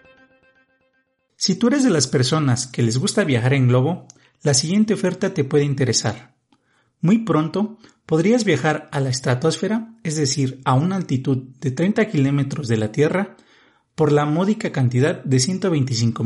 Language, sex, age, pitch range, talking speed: Spanish, male, 40-59, 130-195 Hz, 155 wpm